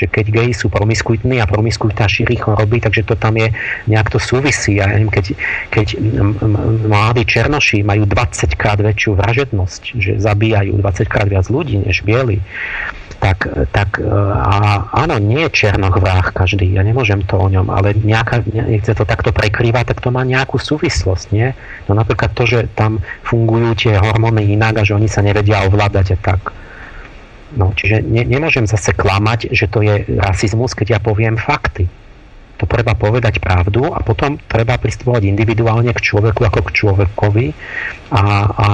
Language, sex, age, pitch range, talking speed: Slovak, male, 40-59, 100-115 Hz, 165 wpm